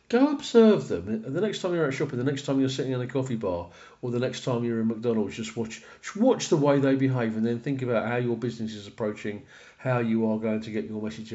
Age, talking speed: 40-59, 265 wpm